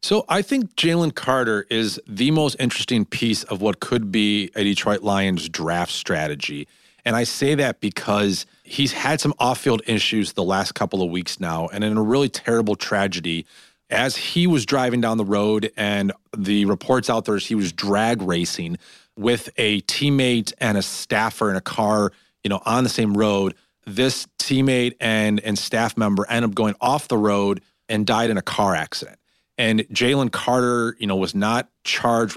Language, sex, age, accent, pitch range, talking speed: English, male, 40-59, American, 105-125 Hz, 185 wpm